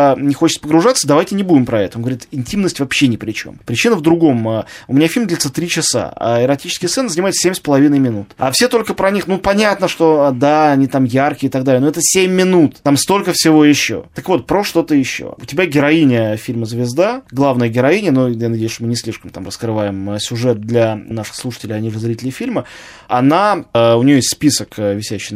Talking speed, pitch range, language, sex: 215 wpm, 120-160 Hz, Russian, male